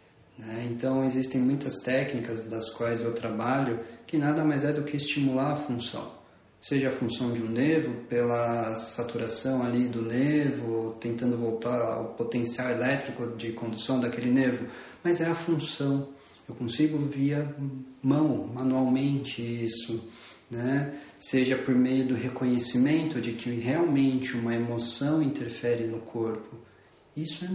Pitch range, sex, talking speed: 115-135 Hz, male, 135 wpm